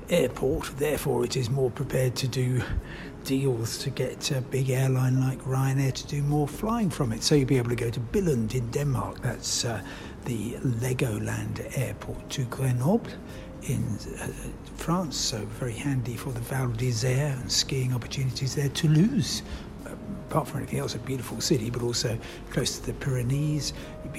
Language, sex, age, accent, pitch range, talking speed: English, male, 60-79, British, 120-140 Hz, 170 wpm